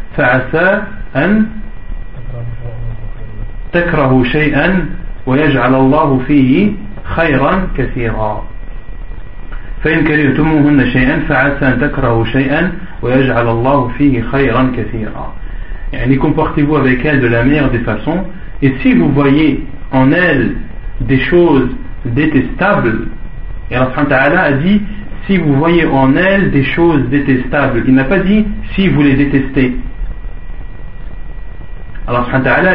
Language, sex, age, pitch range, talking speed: French, male, 40-59, 130-160 Hz, 115 wpm